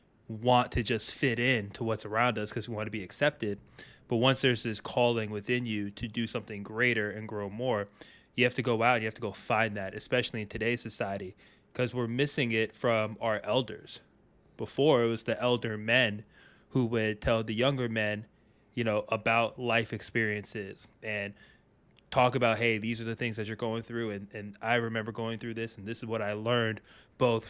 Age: 20-39